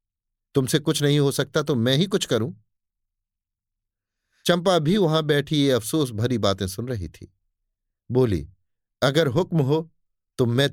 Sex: male